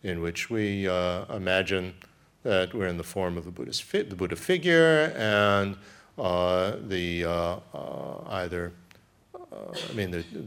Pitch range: 90-110 Hz